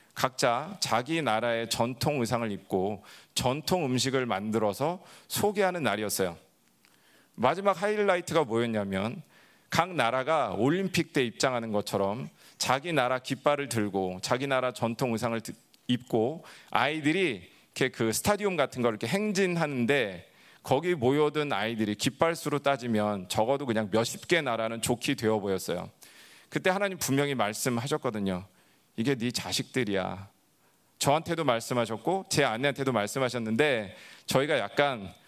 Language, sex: Korean, male